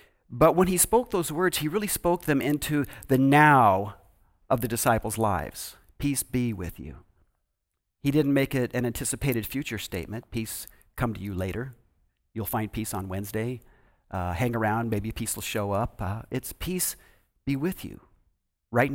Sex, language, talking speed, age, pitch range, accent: male, English, 170 wpm, 50-69, 100-145 Hz, American